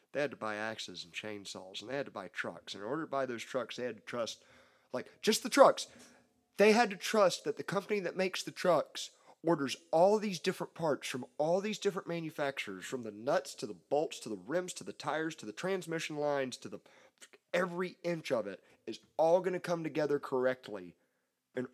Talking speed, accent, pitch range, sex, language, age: 220 wpm, American, 120-180 Hz, male, English, 30-49